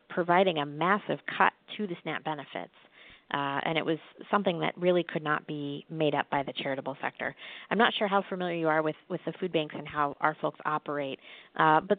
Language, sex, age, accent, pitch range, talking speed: English, female, 30-49, American, 145-170 Hz, 215 wpm